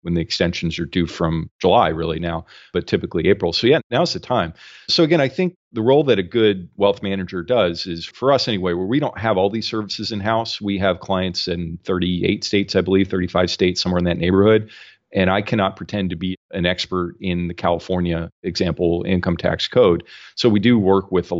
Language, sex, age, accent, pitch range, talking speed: English, male, 40-59, American, 85-100 Hz, 215 wpm